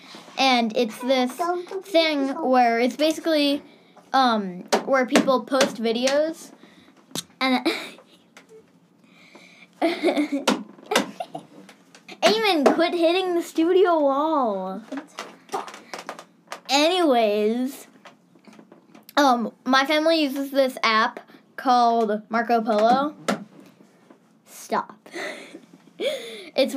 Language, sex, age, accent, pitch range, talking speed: English, female, 10-29, American, 230-290 Hz, 70 wpm